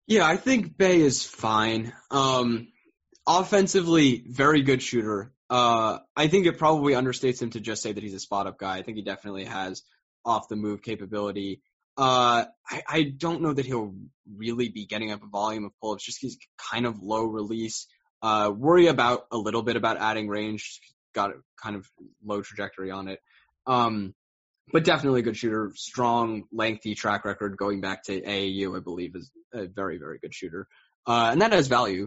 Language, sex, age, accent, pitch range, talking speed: English, male, 10-29, American, 100-125 Hz, 180 wpm